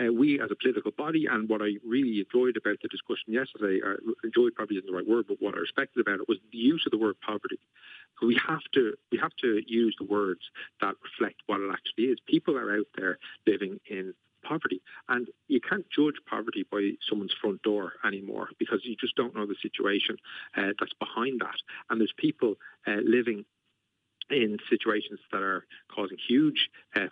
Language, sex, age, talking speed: English, male, 40-59, 200 wpm